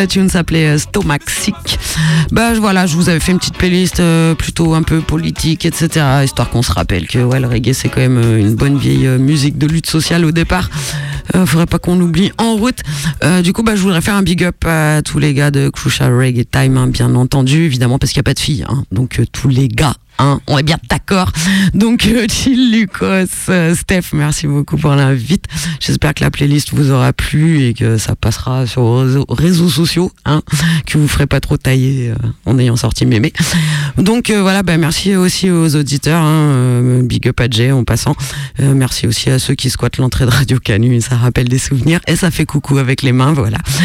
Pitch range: 130-170 Hz